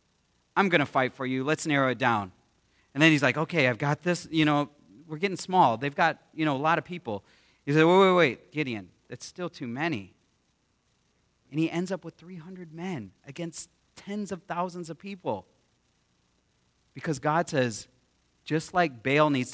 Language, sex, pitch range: English, male, 115-165 Hz